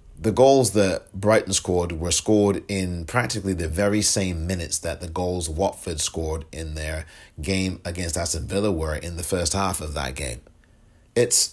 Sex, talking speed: male, 170 wpm